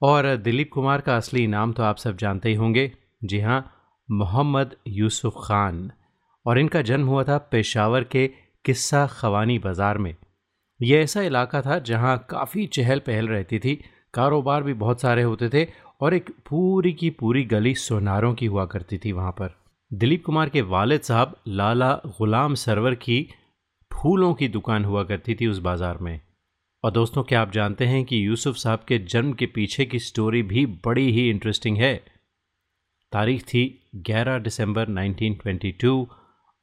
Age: 30-49